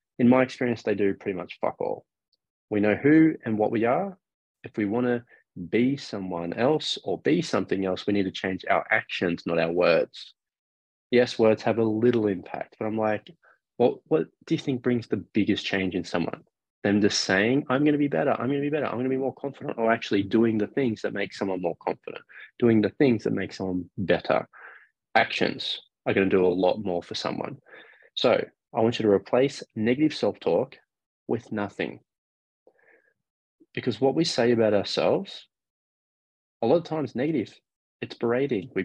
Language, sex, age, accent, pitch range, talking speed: English, male, 20-39, Australian, 100-130 Hz, 185 wpm